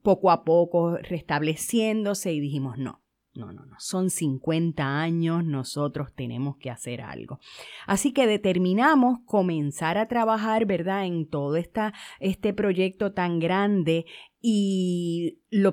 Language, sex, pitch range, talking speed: Spanish, female, 155-220 Hz, 125 wpm